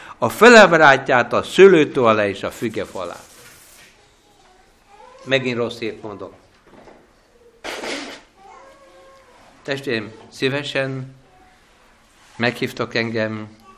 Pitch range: 130-210 Hz